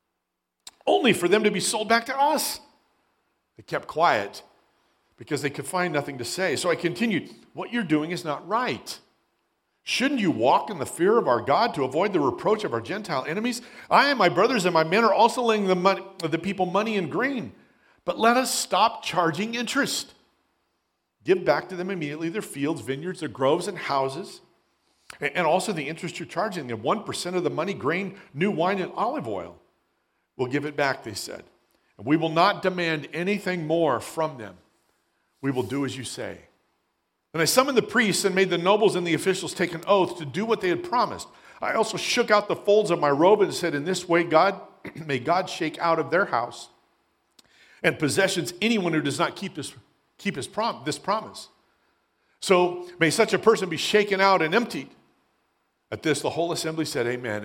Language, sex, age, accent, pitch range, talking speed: English, male, 50-69, American, 155-205 Hz, 200 wpm